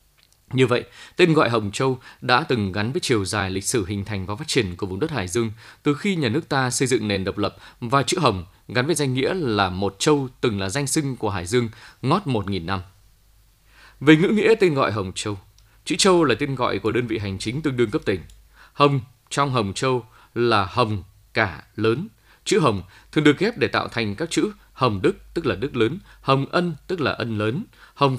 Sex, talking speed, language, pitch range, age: male, 230 wpm, Vietnamese, 100-140 Hz, 20-39